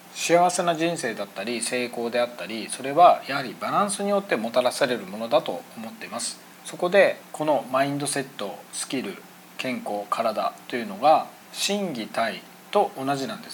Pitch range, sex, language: 125-200 Hz, male, Japanese